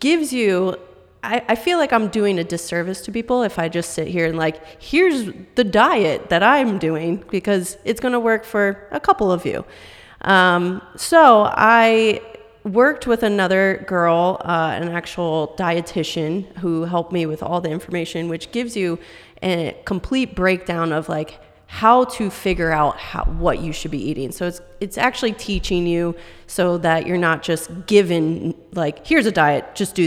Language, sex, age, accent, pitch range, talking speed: English, female, 30-49, American, 165-205 Hz, 175 wpm